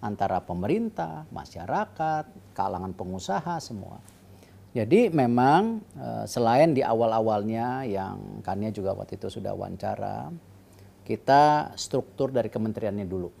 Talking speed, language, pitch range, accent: 105 wpm, Indonesian, 95-120 Hz, native